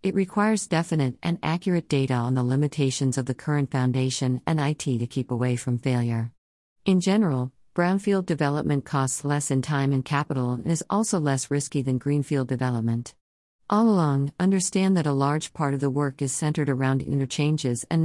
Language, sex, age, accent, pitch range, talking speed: English, female, 50-69, American, 130-160 Hz, 175 wpm